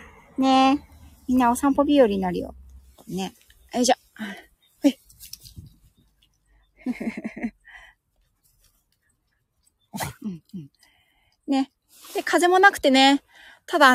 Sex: female